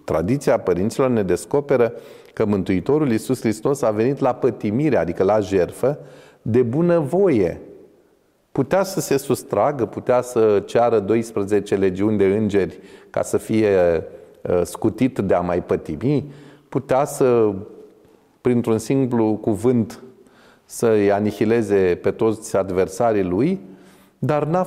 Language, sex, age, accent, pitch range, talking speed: Romanian, male, 30-49, native, 110-155 Hz, 120 wpm